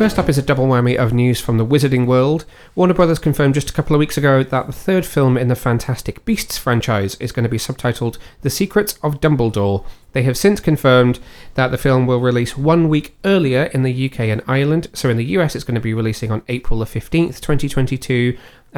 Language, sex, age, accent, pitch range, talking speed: English, male, 30-49, British, 120-150 Hz, 215 wpm